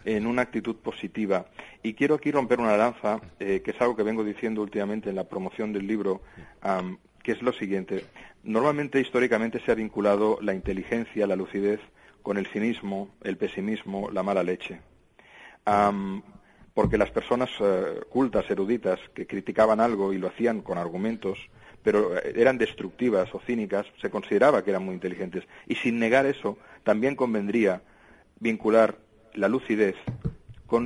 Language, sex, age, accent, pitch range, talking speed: Spanish, male, 40-59, Spanish, 100-120 Hz, 155 wpm